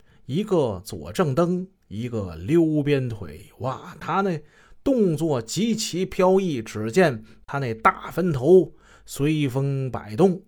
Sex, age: male, 30-49